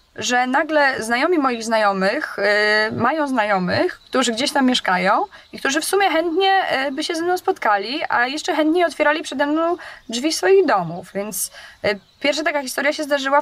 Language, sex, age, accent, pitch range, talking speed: Polish, female, 20-39, native, 215-285 Hz, 160 wpm